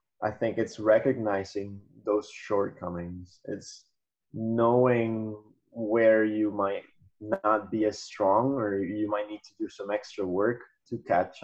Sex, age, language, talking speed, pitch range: male, 20-39, English, 135 wpm, 95-115 Hz